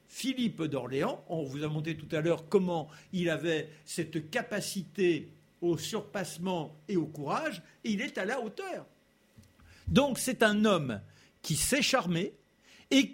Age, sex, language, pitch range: 60-79, male, French, 170-265 Hz